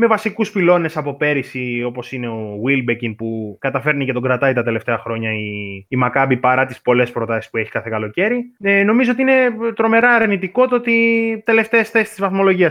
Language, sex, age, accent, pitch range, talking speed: Greek, male, 20-39, native, 130-205 Hz, 190 wpm